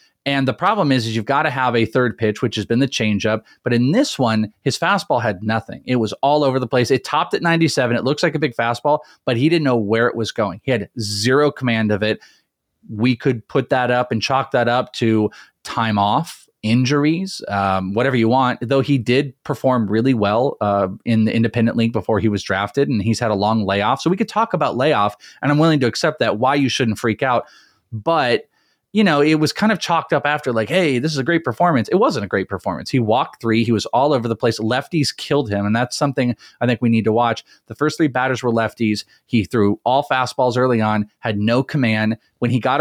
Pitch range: 110-140 Hz